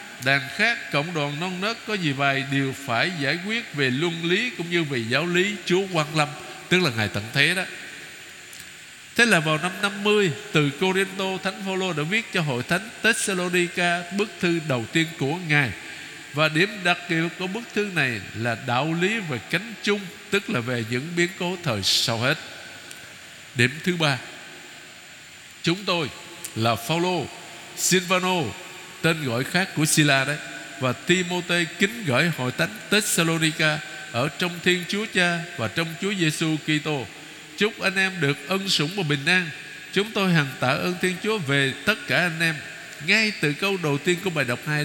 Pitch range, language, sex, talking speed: 145-190 Hz, Vietnamese, male, 180 wpm